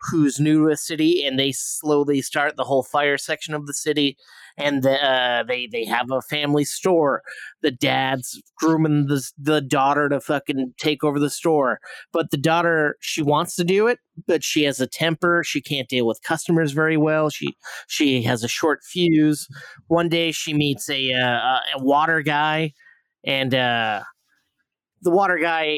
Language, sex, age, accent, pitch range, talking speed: English, male, 30-49, American, 135-170 Hz, 180 wpm